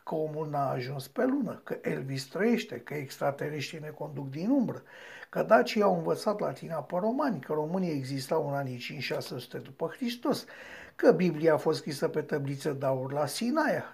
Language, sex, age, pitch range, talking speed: Romanian, male, 60-79, 150-220 Hz, 175 wpm